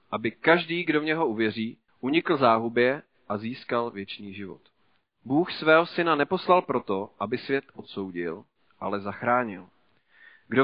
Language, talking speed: Czech, 130 wpm